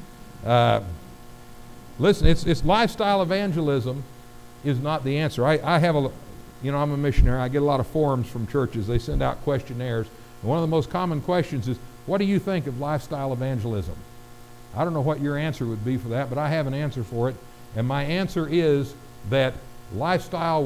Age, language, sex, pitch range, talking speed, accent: 60-79, English, male, 115-165 Hz, 200 wpm, American